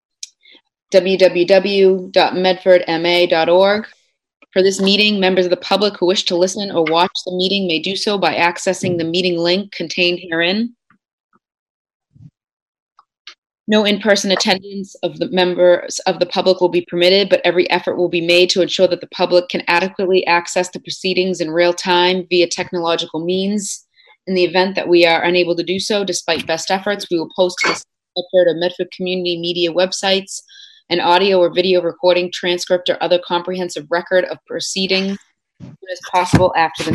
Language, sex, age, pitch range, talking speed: English, female, 30-49, 175-190 Hz, 160 wpm